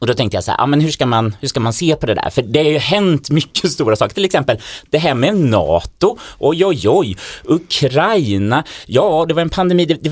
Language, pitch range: Swedish, 105-145 Hz